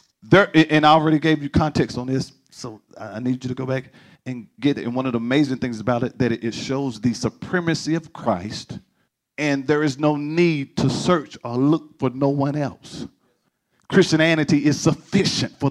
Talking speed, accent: 195 wpm, American